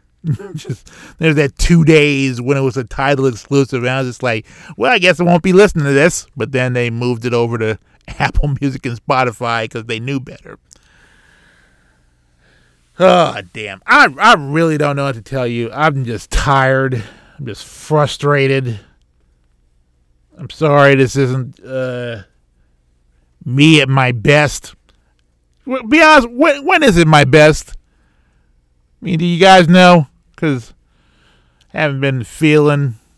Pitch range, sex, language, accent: 115-150 Hz, male, English, American